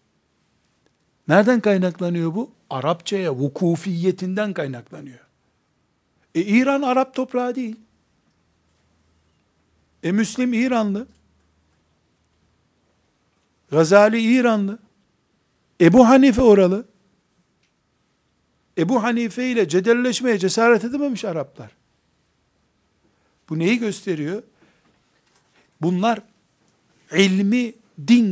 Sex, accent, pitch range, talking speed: male, native, 155-225 Hz, 70 wpm